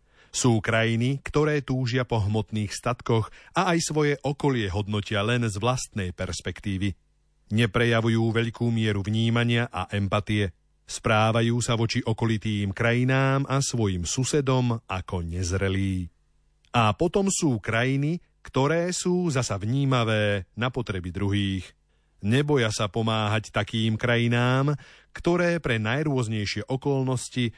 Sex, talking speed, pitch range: male, 115 wpm, 105-135 Hz